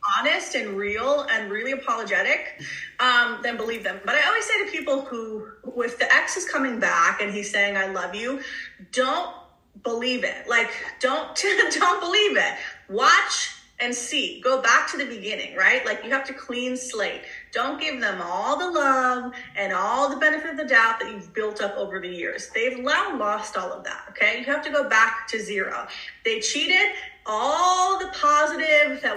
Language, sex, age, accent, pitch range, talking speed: English, female, 30-49, American, 215-310 Hz, 185 wpm